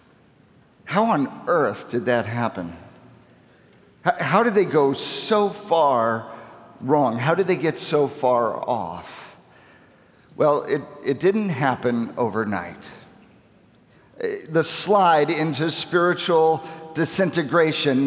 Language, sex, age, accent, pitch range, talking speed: English, male, 50-69, American, 125-160 Hz, 105 wpm